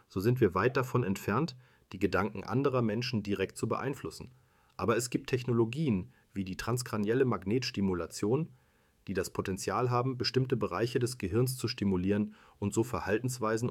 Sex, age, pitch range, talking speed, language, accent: male, 40-59, 100-125 Hz, 150 wpm, German, German